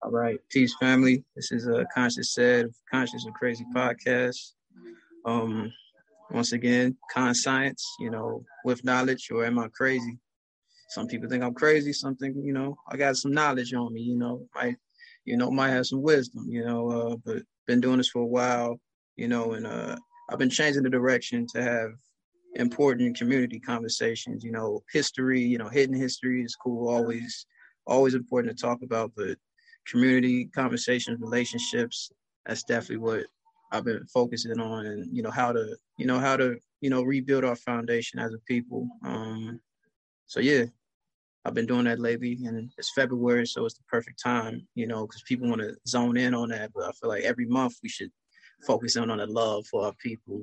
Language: English